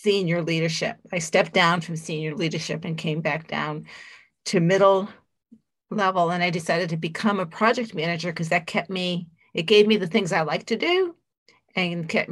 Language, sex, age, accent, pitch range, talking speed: English, female, 40-59, American, 170-210 Hz, 185 wpm